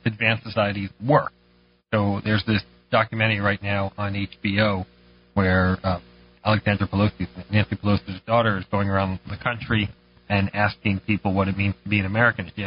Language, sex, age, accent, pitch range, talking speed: English, male, 40-59, American, 95-110 Hz, 160 wpm